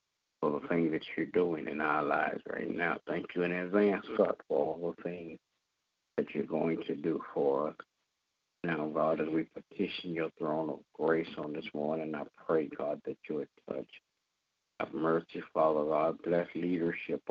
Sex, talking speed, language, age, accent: male, 175 wpm, English, 60-79, American